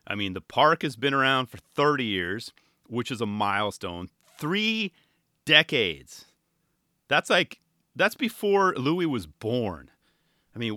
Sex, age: male, 30-49